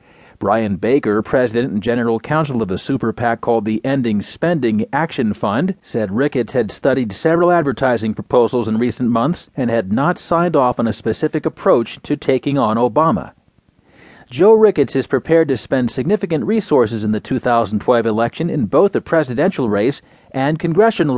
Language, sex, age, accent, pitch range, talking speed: English, male, 40-59, American, 120-165 Hz, 165 wpm